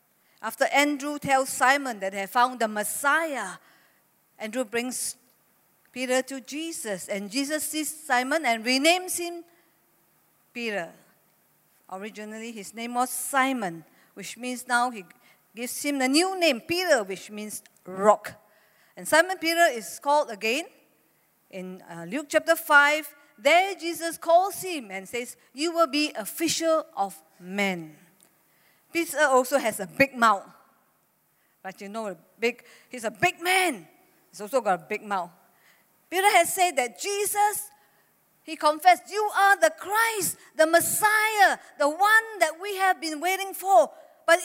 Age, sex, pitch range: 50-69, female, 210-340 Hz